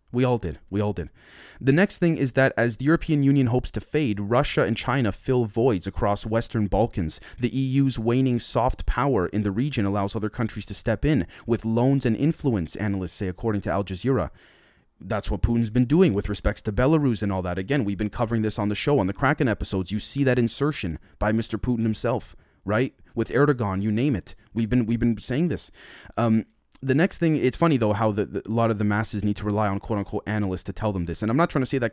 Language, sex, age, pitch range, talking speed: English, male, 30-49, 105-130 Hz, 235 wpm